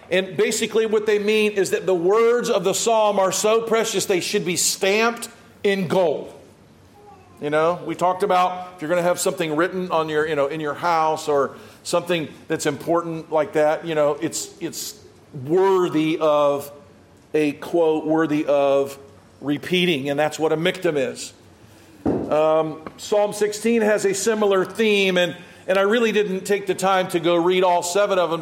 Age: 50-69